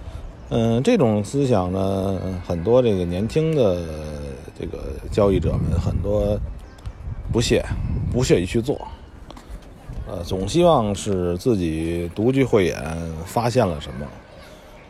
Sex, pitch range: male, 85-120 Hz